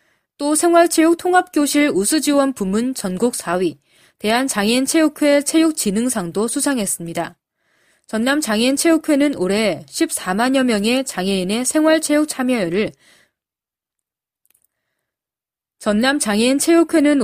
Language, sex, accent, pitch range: Korean, female, native, 205-285 Hz